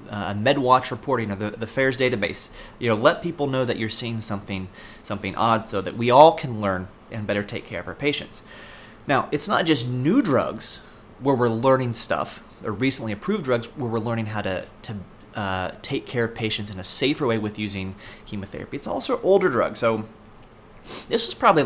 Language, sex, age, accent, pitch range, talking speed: English, male, 30-49, American, 105-130 Hz, 200 wpm